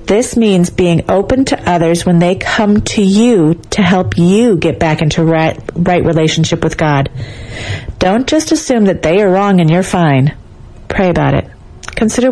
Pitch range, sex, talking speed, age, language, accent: 160-220 Hz, female, 175 wpm, 40-59, English, American